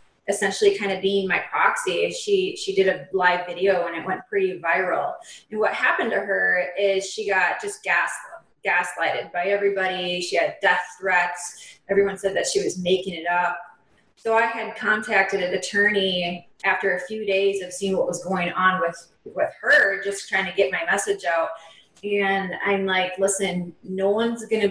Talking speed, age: 185 wpm, 20-39